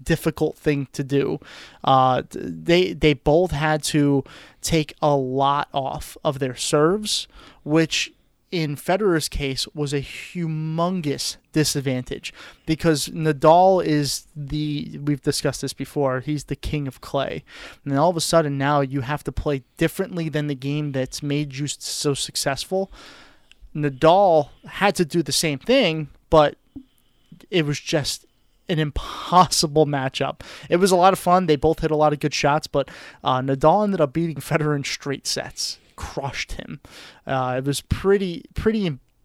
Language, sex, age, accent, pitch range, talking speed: English, male, 20-39, American, 140-165 Hz, 155 wpm